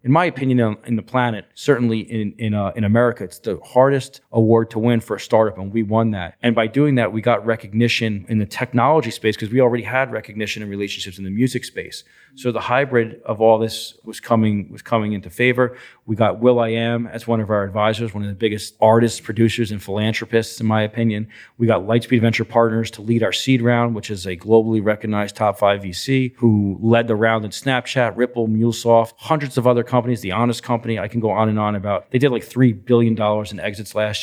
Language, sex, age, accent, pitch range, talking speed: English, male, 40-59, American, 110-125 Hz, 230 wpm